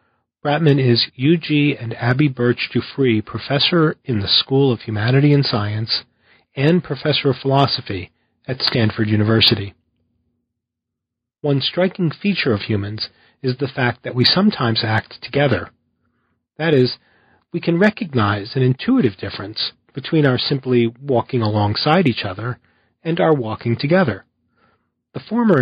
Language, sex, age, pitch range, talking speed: English, male, 40-59, 115-155 Hz, 130 wpm